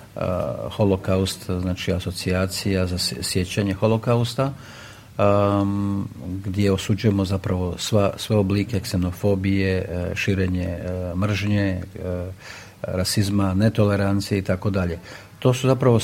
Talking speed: 80 wpm